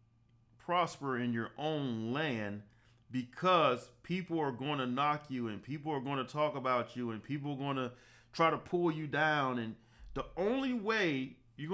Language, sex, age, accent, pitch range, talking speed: English, male, 40-59, American, 120-150 Hz, 180 wpm